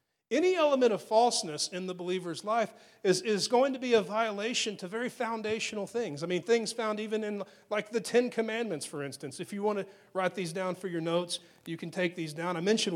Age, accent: 40-59, American